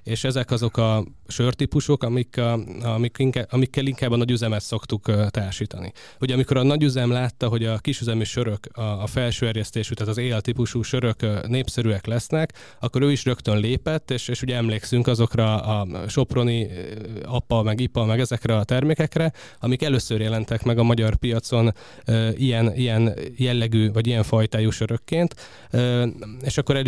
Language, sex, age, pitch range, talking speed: Hungarian, male, 20-39, 110-125 Hz, 150 wpm